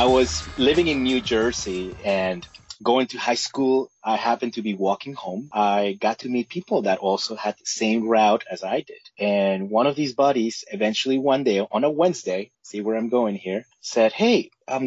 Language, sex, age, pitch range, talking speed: English, male, 30-49, 105-130 Hz, 200 wpm